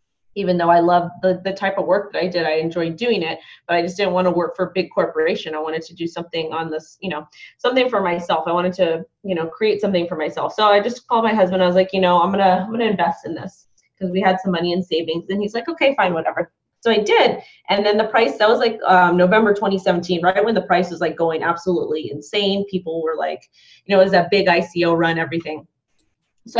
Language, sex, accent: English, female, American